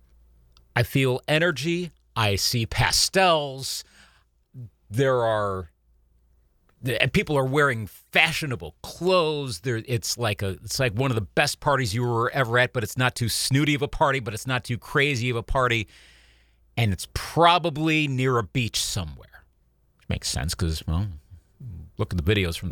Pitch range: 100-145 Hz